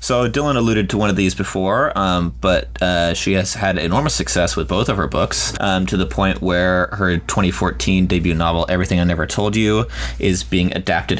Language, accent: English, American